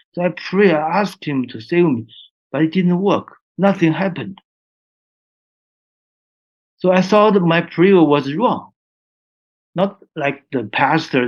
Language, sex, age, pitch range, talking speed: English, male, 60-79, 115-155 Hz, 140 wpm